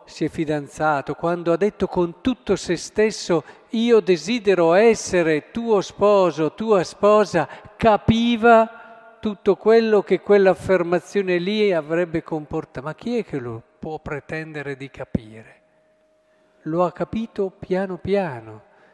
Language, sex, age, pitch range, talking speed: Italian, male, 50-69, 155-210 Hz, 125 wpm